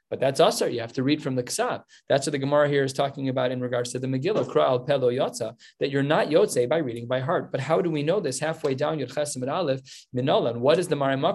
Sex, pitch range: male, 130-170 Hz